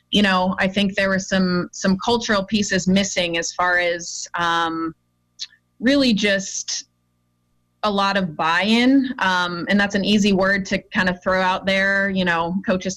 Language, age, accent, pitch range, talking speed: English, 20-39, American, 175-205 Hz, 160 wpm